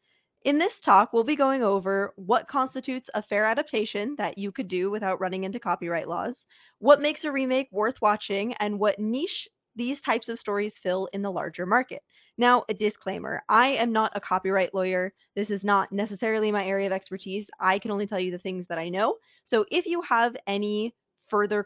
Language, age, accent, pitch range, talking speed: English, 20-39, American, 190-235 Hz, 200 wpm